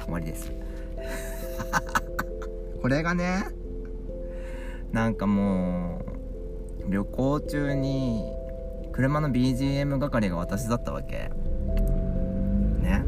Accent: native